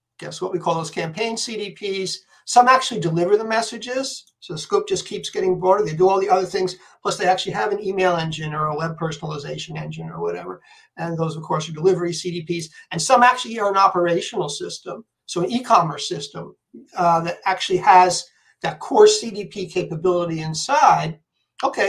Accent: American